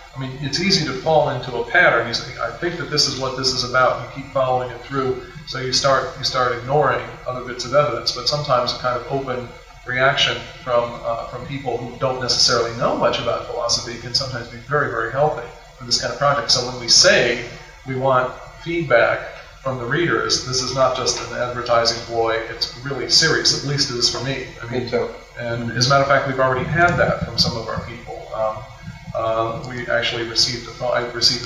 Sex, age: male, 40-59